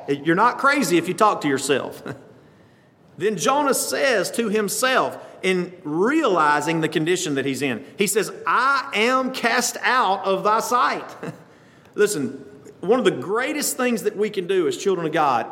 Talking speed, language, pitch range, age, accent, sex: 165 wpm, English, 150-220 Hz, 40-59, American, male